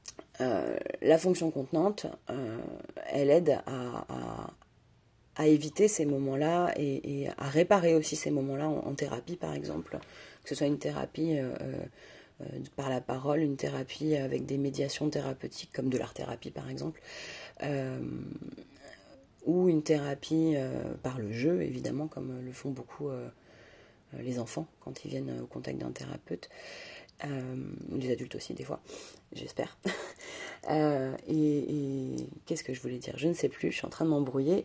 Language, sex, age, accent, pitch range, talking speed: French, female, 30-49, French, 135-160 Hz, 165 wpm